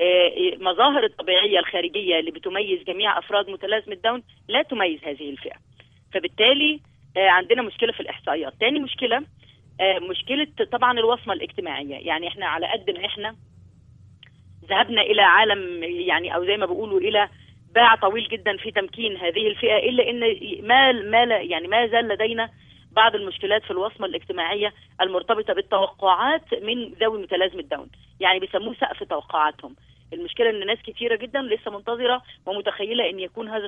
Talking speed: 140 wpm